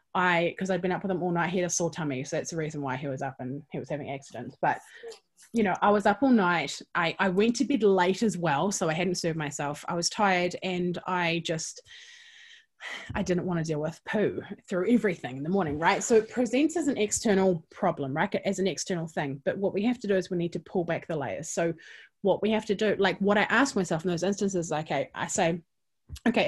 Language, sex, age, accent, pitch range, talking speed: English, female, 20-39, Australian, 165-205 Hz, 250 wpm